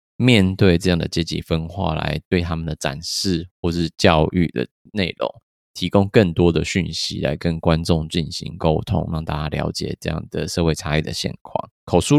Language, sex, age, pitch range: Chinese, male, 20-39, 80-95 Hz